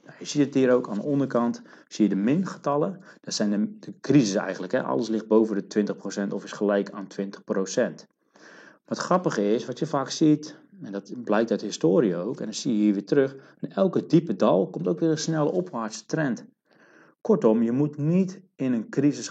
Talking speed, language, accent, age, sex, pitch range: 215 wpm, Dutch, Dutch, 40-59, male, 105-155 Hz